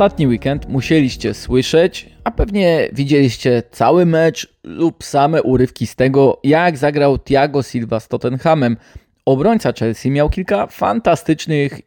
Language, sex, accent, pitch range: Polish, male, native, 120-155 Hz